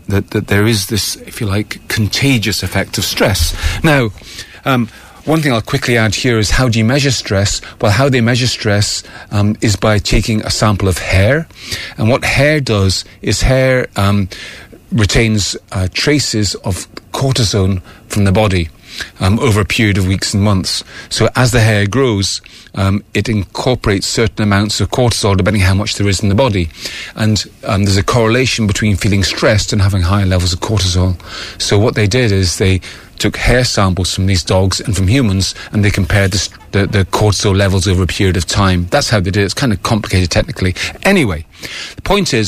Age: 40-59